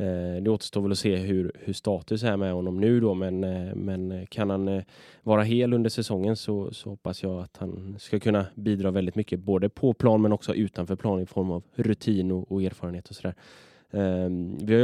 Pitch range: 95-110 Hz